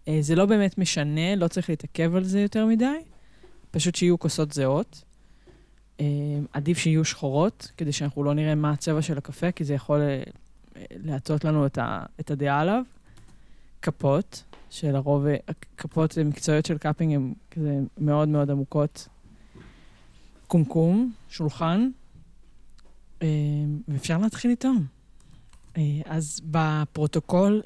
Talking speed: 115 wpm